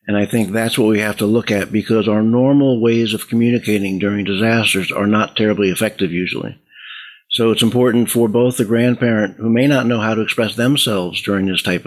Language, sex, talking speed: English, male, 205 wpm